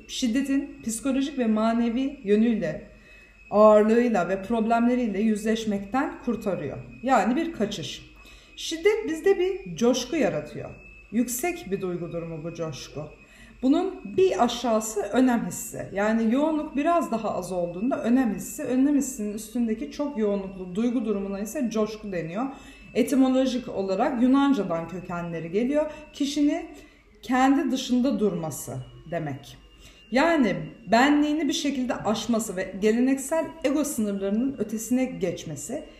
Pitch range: 195-265 Hz